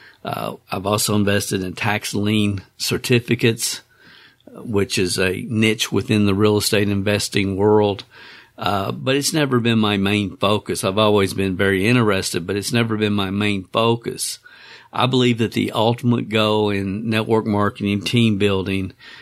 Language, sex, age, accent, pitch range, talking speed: English, male, 50-69, American, 100-120 Hz, 155 wpm